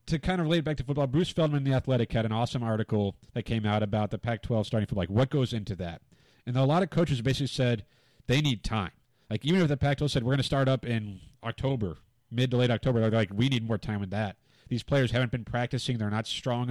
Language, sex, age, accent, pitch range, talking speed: English, male, 30-49, American, 110-135 Hz, 260 wpm